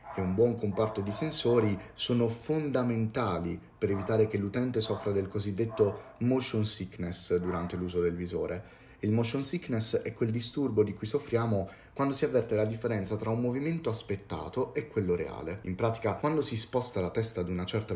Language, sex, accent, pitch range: Italian, male, native, 95-115 Hz